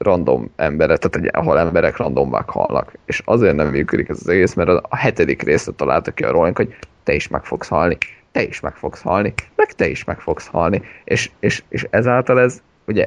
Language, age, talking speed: Hungarian, 30-49, 205 wpm